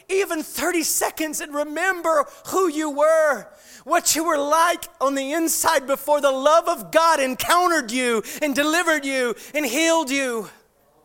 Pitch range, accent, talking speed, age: 245-345 Hz, American, 150 wpm, 40-59